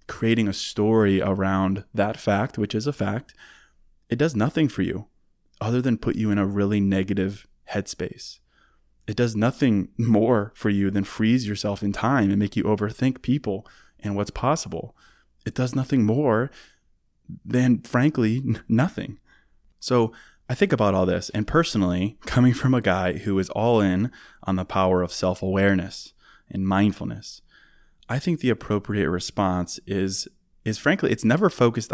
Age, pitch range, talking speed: 20-39, 95-115 Hz, 160 wpm